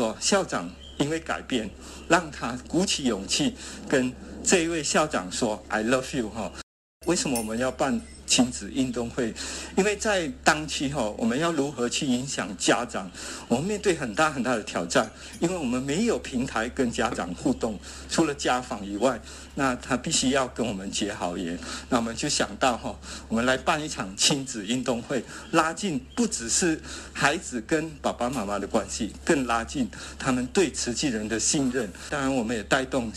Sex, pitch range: male, 120-165 Hz